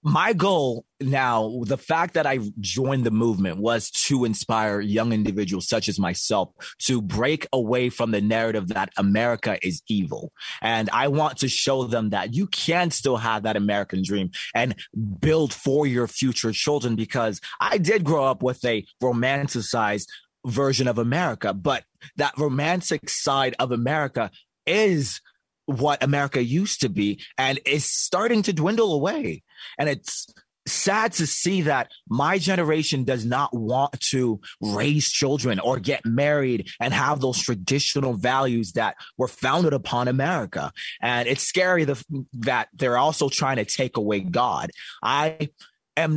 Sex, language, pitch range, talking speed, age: male, English, 115-150 Hz, 150 wpm, 30-49